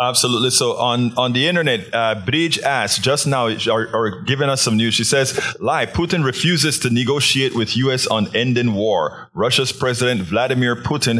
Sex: male